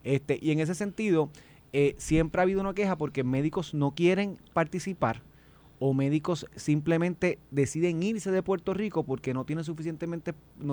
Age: 30-49